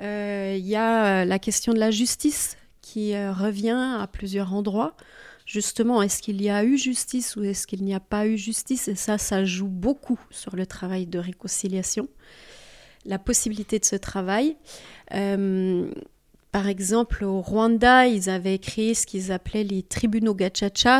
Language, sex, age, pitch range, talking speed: French, female, 30-49, 190-230 Hz, 170 wpm